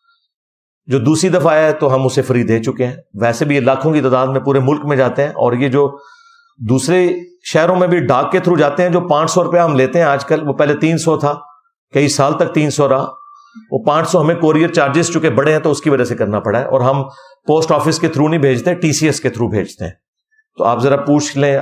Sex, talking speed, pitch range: male, 260 wpm, 130-165 Hz